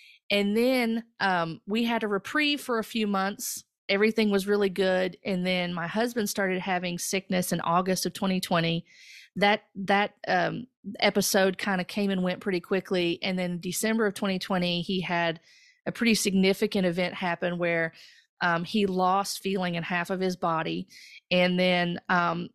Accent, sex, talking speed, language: American, female, 165 wpm, English